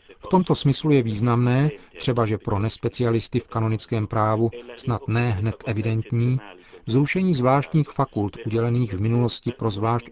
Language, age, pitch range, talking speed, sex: Czech, 40-59, 110-130 Hz, 140 wpm, male